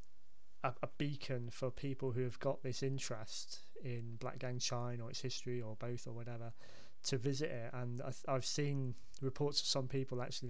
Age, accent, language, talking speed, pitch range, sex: 20-39, British, English, 175 wpm, 120-140 Hz, male